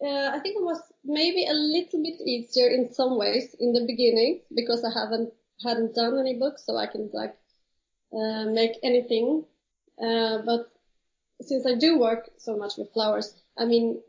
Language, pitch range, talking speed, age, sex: English, 225-285 Hz, 180 wpm, 30-49, female